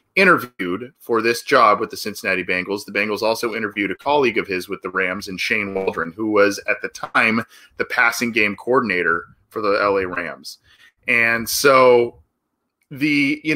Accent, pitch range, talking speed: American, 110-140 Hz, 175 wpm